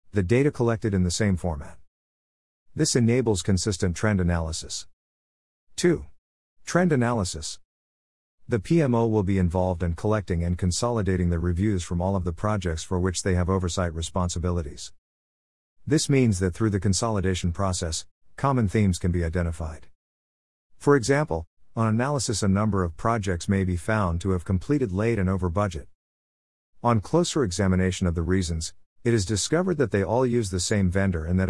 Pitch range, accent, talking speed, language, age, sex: 85-110 Hz, American, 160 wpm, English, 50-69, male